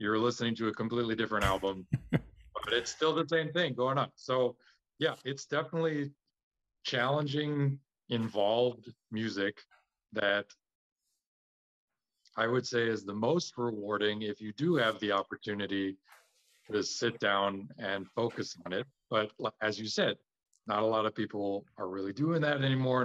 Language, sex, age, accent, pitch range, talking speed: English, male, 40-59, American, 95-115 Hz, 150 wpm